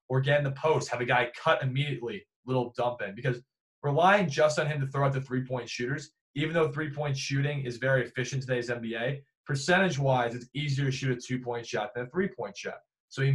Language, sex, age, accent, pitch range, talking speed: English, male, 20-39, American, 120-140 Hz, 215 wpm